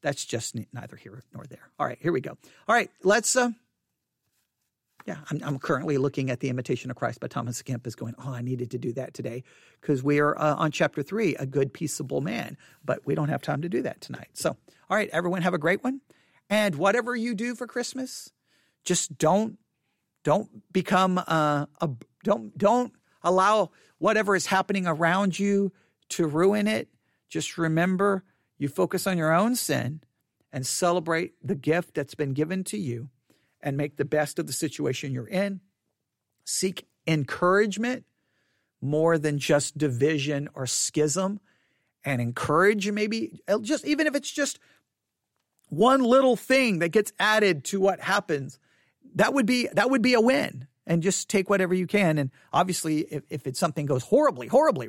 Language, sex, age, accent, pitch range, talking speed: English, male, 50-69, American, 140-200 Hz, 175 wpm